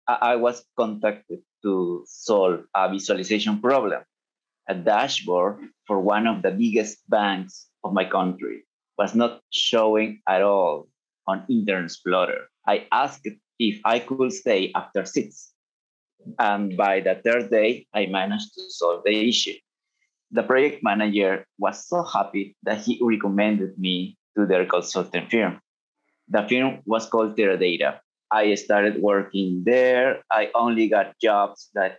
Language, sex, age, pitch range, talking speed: English, male, 30-49, 95-120 Hz, 140 wpm